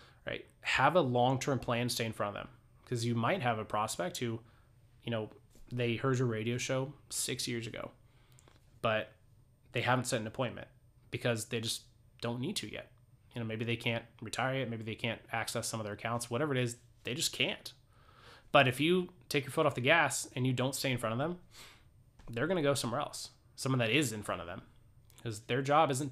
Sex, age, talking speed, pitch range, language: male, 20-39, 220 wpm, 110-125 Hz, English